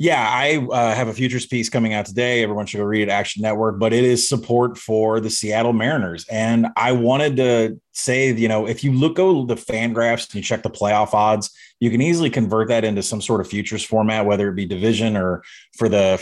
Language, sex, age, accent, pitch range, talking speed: English, male, 30-49, American, 110-130 Hz, 235 wpm